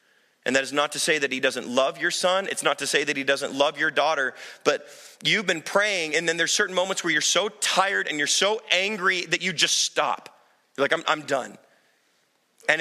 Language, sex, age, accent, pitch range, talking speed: English, male, 30-49, American, 135-185 Hz, 230 wpm